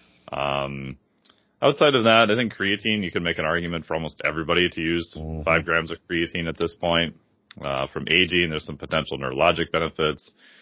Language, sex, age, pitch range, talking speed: English, male, 30-49, 75-90 Hz, 180 wpm